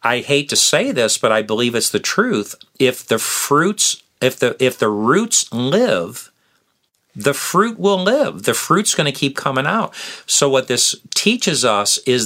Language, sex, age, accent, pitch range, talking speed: English, male, 50-69, American, 115-150 Hz, 180 wpm